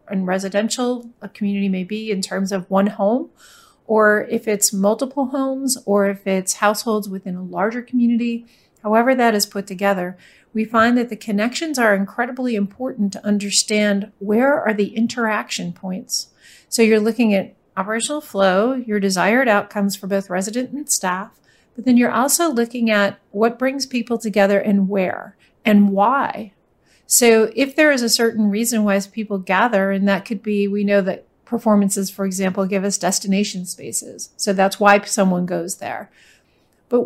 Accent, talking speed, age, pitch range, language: American, 165 wpm, 40-59, 200-235 Hz, English